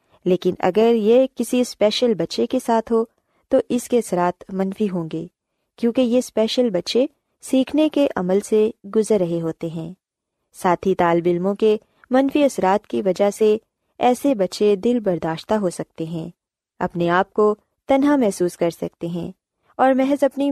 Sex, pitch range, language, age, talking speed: female, 180-245 Hz, Urdu, 20-39, 160 wpm